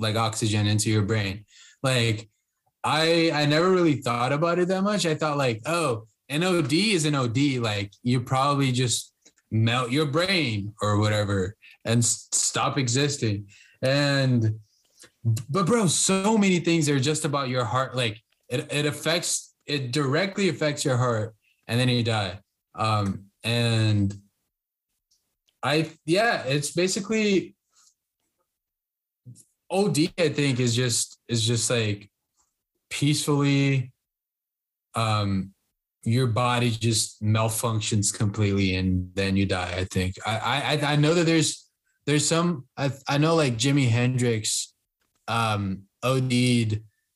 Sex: male